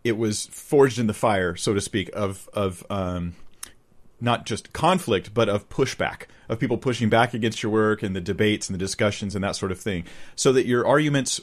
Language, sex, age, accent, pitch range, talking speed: English, male, 40-59, American, 100-120 Hz, 210 wpm